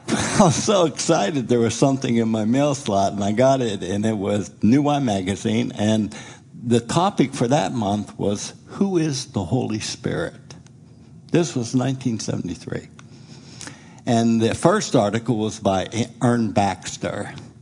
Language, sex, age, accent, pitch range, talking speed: English, male, 60-79, American, 110-135 Hz, 150 wpm